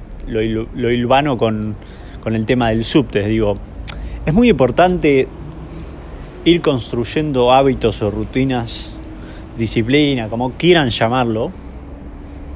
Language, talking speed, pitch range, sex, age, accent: Spanish, 110 wpm, 100-155 Hz, male, 20-39, Argentinian